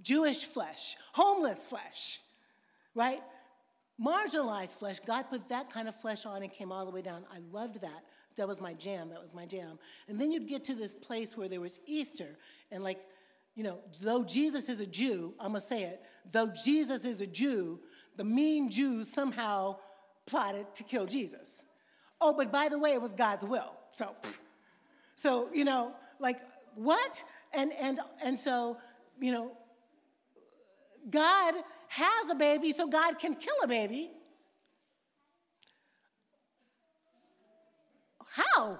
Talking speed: 155 wpm